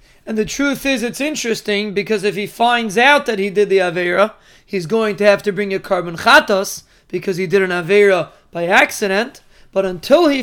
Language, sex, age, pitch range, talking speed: English, male, 30-49, 200-240 Hz, 200 wpm